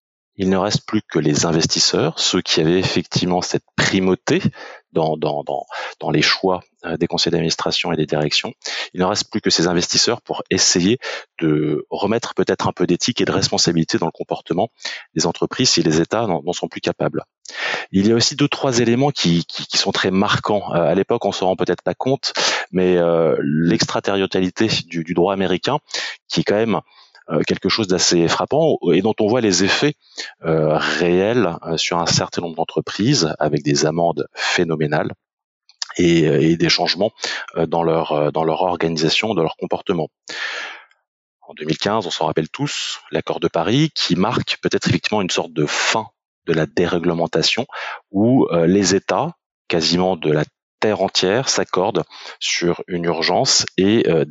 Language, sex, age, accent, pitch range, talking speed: French, male, 30-49, French, 80-95 Hz, 175 wpm